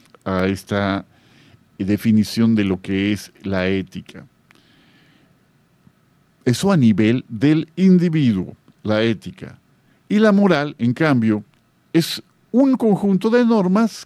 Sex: male